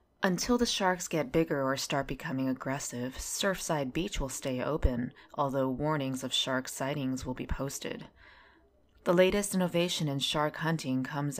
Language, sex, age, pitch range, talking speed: English, female, 20-39, 135-160 Hz, 155 wpm